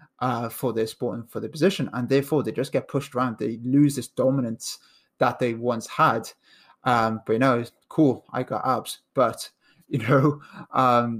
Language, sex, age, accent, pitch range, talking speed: English, male, 20-39, British, 120-135 Hz, 195 wpm